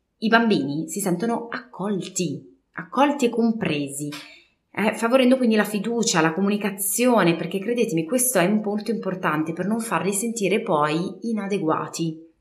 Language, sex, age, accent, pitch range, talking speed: Italian, female, 30-49, native, 165-225 Hz, 135 wpm